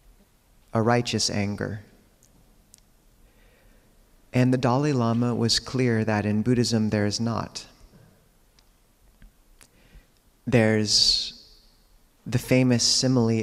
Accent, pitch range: American, 105-120 Hz